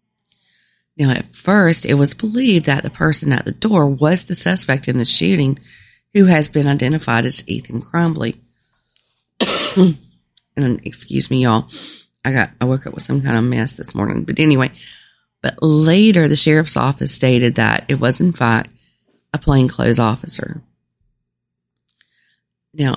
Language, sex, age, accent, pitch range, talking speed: English, female, 40-59, American, 115-155 Hz, 155 wpm